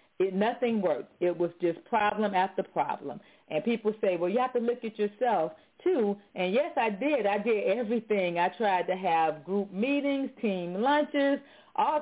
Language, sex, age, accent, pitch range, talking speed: English, female, 40-59, American, 175-220 Hz, 175 wpm